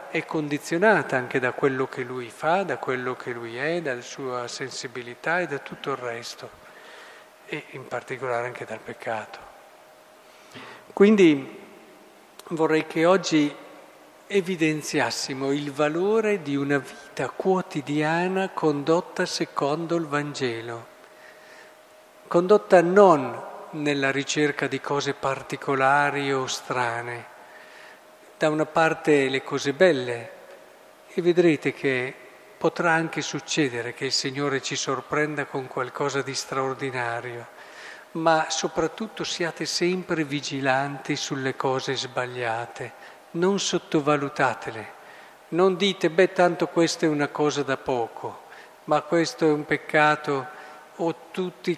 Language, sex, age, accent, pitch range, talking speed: Italian, male, 50-69, native, 135-165 Hz, 115 wpm